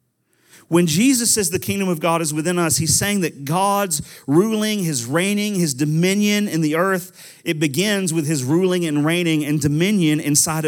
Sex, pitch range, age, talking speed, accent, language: male, 160-200 Hz, 40-59, 180 wpm, American, English